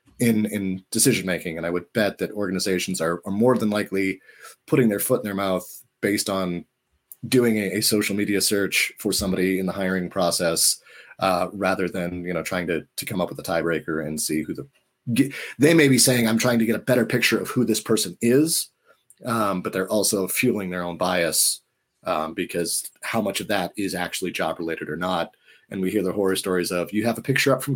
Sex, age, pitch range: male, 30-49, 95-125 Hz